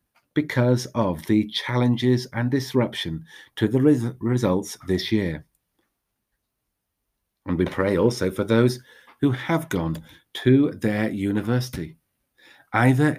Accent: British